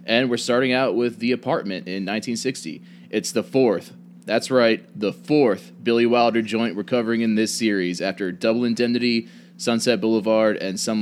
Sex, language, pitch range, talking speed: male, English, 95-120 Hz, 170 wpm